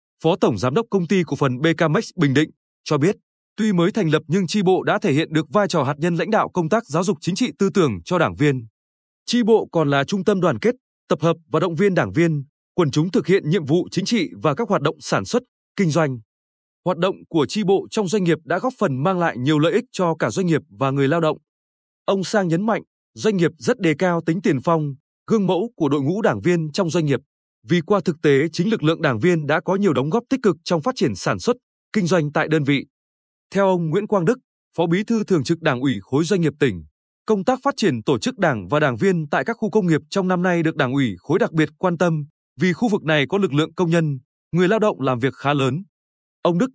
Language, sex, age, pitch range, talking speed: Vietnamese, male, 20-39, 150-200 Hz, 260 wpm